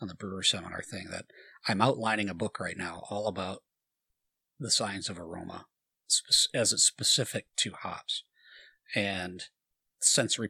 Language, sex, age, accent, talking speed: English, male, 40-59, American, 145 wpm